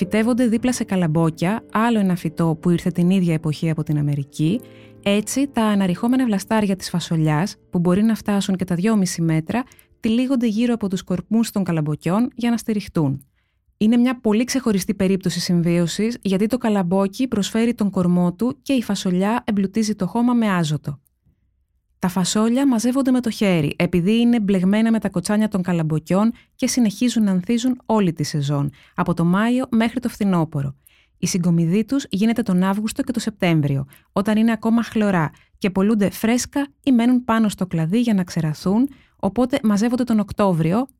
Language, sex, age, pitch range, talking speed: Greek, female, 20-39, 175-230 Hz, 170 wpm